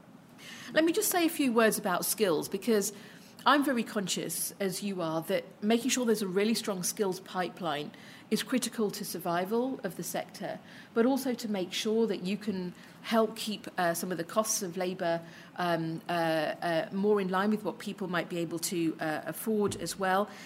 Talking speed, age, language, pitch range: 185 wpm, 40-59, English, 180-225 Hz